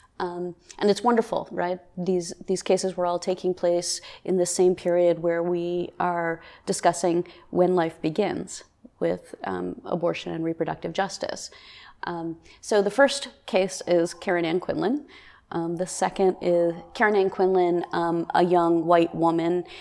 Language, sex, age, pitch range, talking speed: English, female, 30-49, 170-190 Hz, 150 wpm